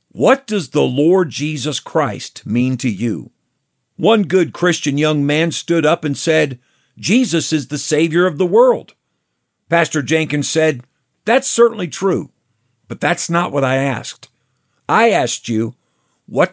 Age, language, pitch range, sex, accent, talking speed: 50-69, English, 125-170 Hz, male, American, 150 wpm